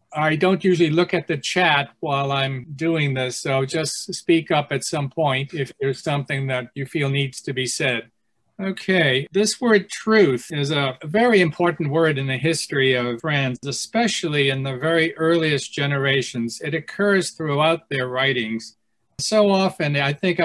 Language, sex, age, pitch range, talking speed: English, male, 50-69, 130-160 Hz, 165 wpm